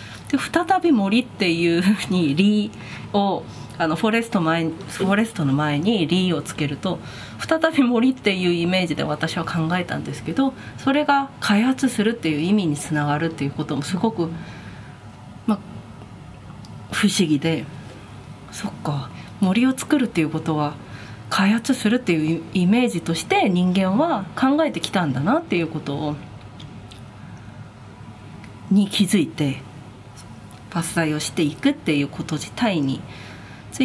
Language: Japanese